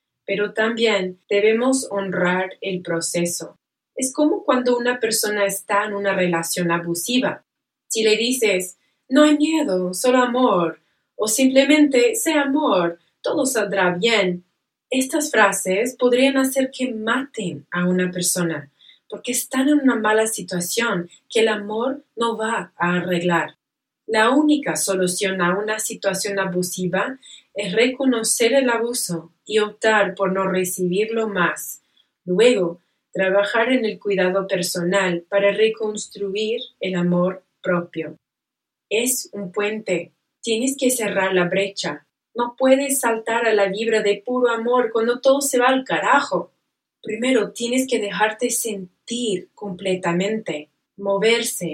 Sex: female